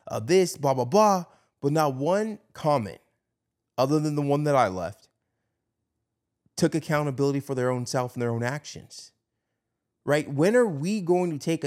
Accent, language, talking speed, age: American, English, 170 wpm, 20-39